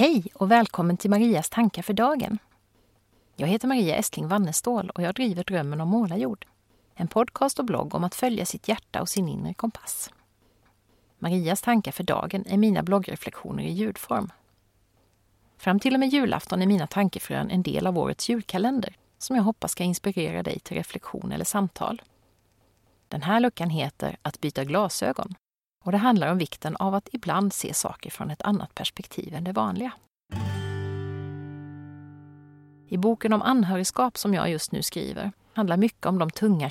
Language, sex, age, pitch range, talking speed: Swedish, female, 30-49, 155-215 Hz, 170 wpm